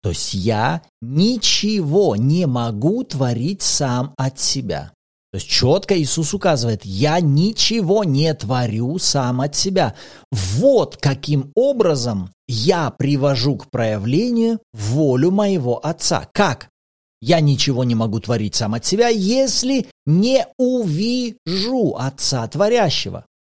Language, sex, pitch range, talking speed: Russian, male, 130-210 Hz, 115 wpm